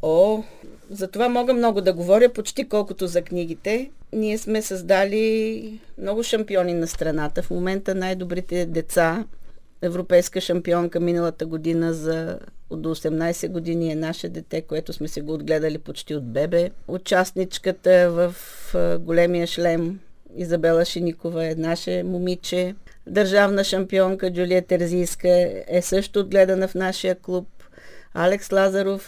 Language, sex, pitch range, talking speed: Bulgarian, female, 170-195 Hz, 130 wpm